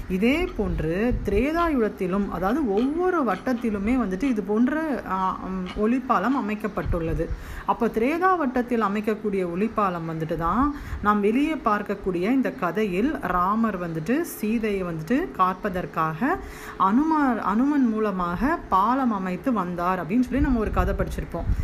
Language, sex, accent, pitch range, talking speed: Tamil, female, native, 195-255 Hz, 110 wpm